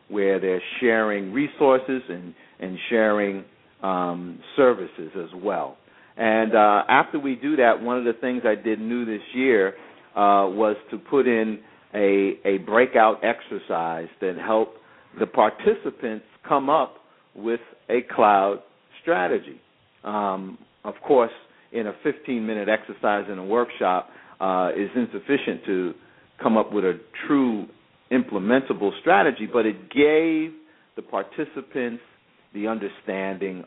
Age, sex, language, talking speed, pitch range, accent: 50-69, male, English, 130 wpm, 95-120 Hz, American